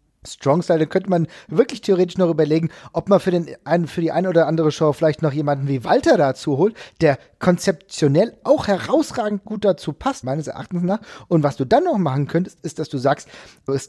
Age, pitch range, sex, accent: 40-59, 140-180 Hz, male, German